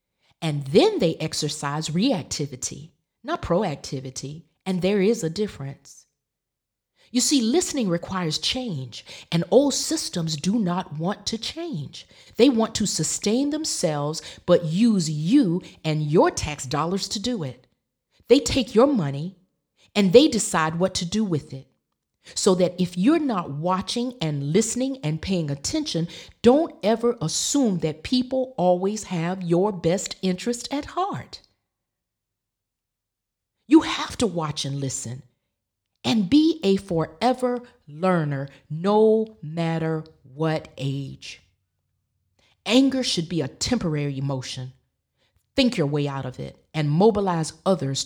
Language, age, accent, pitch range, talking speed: English, 40-59, American, 140-220 Hz, 130 wpm